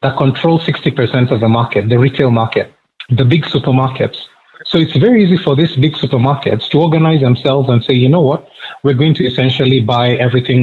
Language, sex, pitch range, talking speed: English, male, 120-145 Hz, 190 wpm